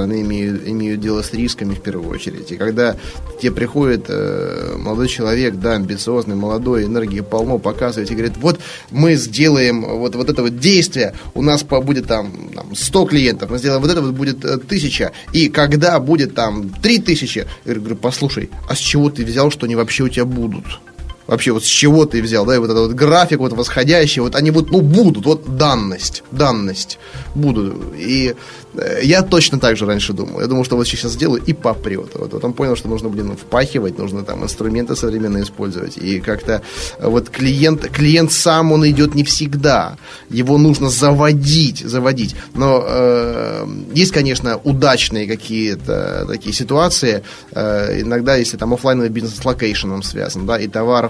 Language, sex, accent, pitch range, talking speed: Russian, male, native, 110-140 Hz, 180 wpm